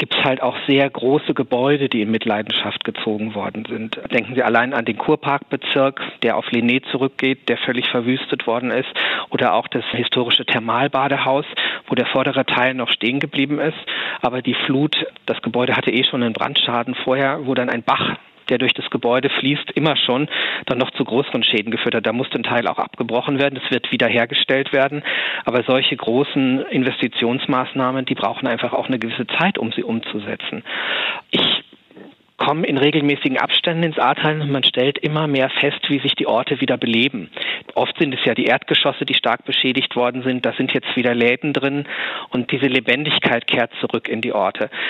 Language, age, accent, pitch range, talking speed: German, 40-59, German, 125-145 Hz, 185 wpm